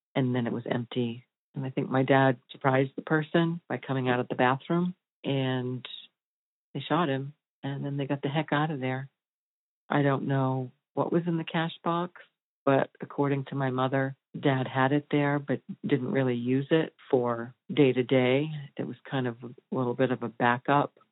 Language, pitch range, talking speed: English, 125-140 Hz, 190 wpm